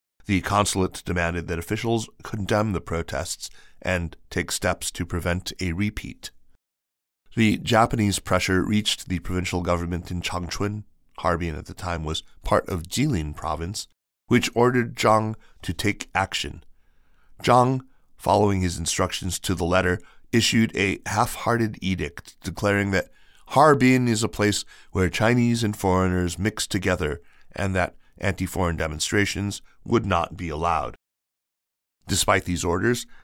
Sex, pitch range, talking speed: male, 85-105 Hz, 130 wpm